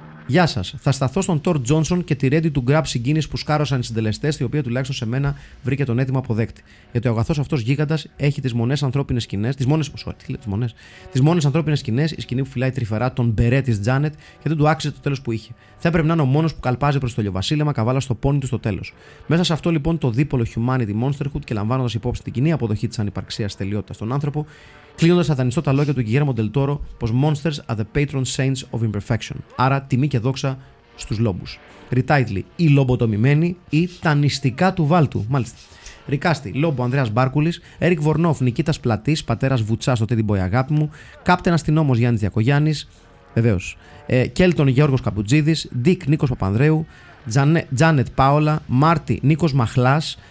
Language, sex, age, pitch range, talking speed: Greek, male, 30-49, 120-150 Hz, 180 wpm